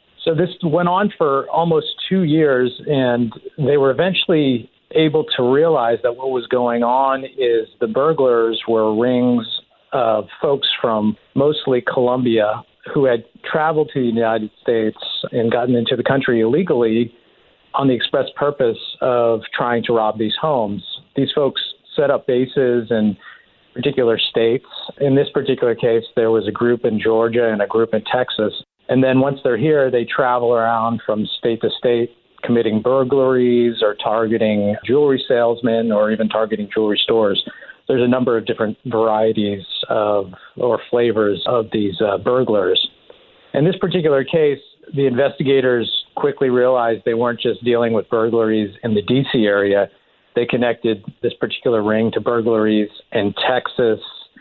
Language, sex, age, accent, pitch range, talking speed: English, male, 50-69, American, 110-135 Hz, 155 wpm